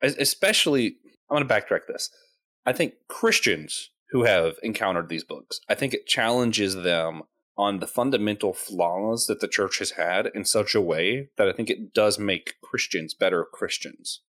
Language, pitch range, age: English, 100-130 Hz, 30-49